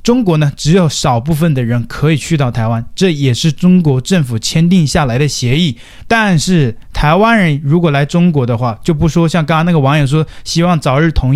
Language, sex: Chinese, male